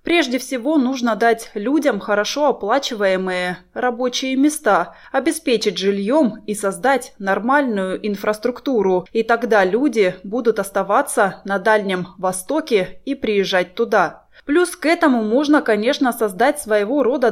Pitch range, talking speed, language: 200-275 Hz, 120 wpm, Russian